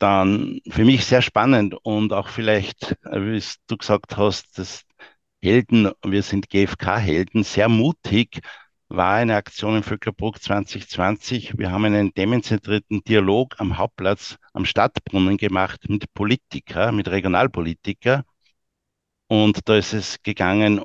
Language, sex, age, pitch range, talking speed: German, male, 60-79, 100-115 Hz, 125 wpm